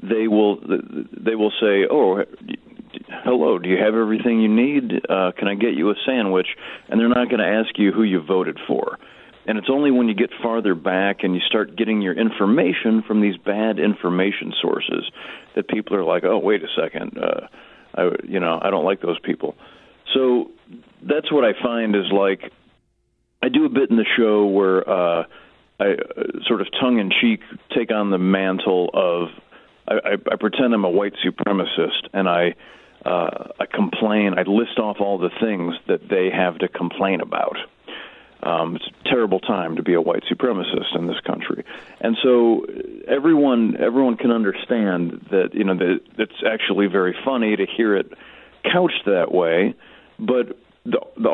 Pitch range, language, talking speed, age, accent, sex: 95-125 Hz, English, 180 wpm, 40-59, American, male